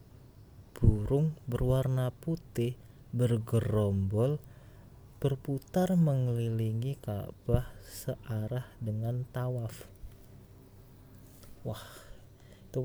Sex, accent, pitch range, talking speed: male, native, 100-125 Hz, 55 wpm